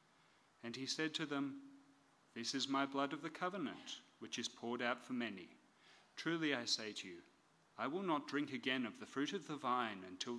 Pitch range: 125-165 Hz